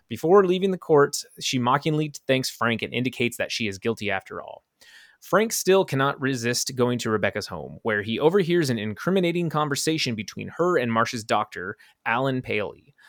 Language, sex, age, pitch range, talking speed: English, male, 30-49, 115-155 Hz, 170 wpm